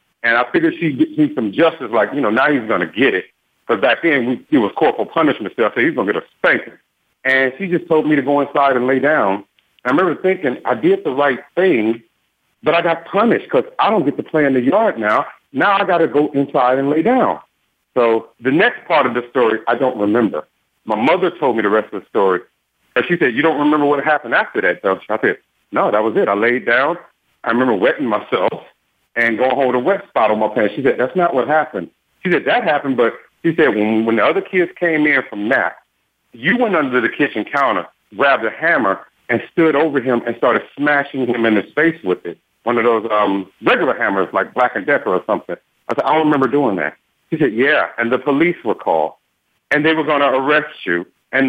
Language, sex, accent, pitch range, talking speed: English, male, American, 120-160 Hz, 240 wpm